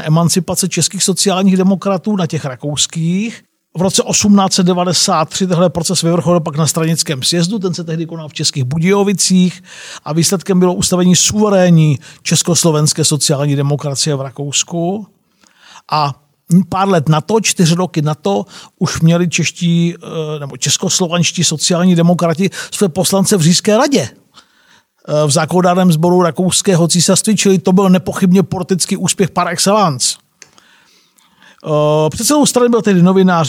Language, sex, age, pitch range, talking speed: Czech, male, 50-69, 155-190 Hz, 130 wpm